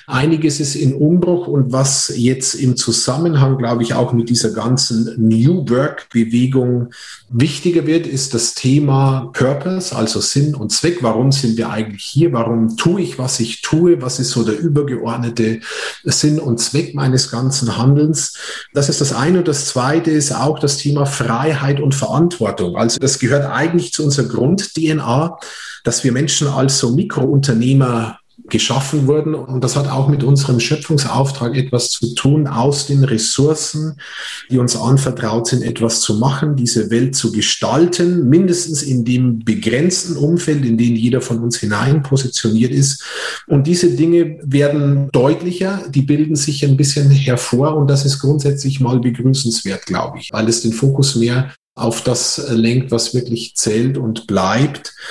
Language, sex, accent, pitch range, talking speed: German, male, German, 120-150 Hz, 160 wpm